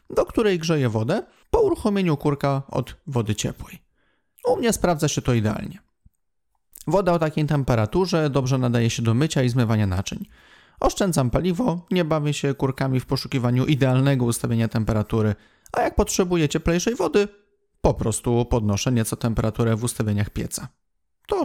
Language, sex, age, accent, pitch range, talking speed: Polish, male, 30-49, native, 115-155 Hz, 150 wpm